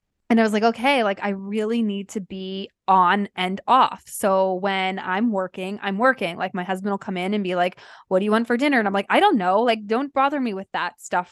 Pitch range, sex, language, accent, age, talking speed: 185-225 Hz, female, English, American, 20-39, 255 wpm